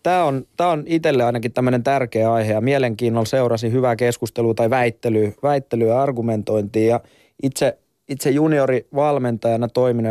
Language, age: Finnish, 20-39